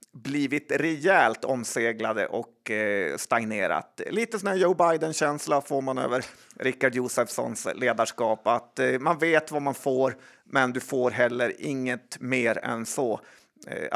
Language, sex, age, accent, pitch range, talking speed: Swedish, male, 30-49, native, 125-160 Hz, 140 wpm